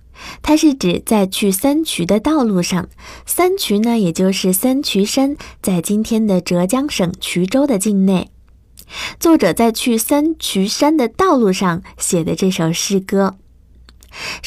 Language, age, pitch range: Chinese, 20-39, 185-265 Hz